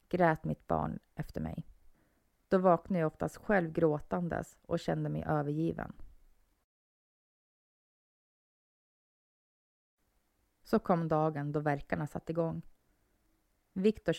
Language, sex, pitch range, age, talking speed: Swedish, female, 145-175 Hz, 30-49, 95 wpm